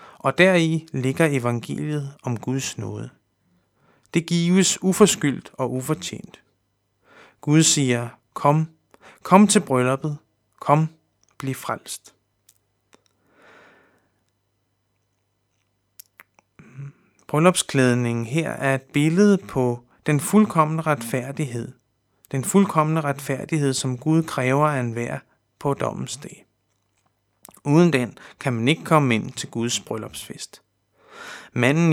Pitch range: 120-160 Hz